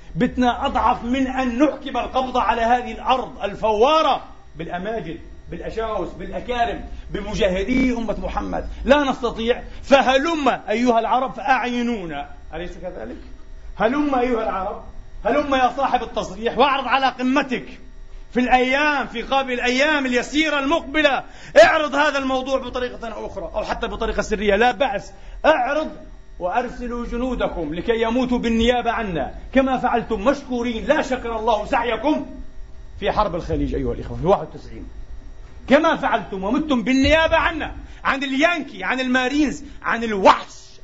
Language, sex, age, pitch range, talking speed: Arabic, male, 40-59, 215-265 Hz, 125 wpm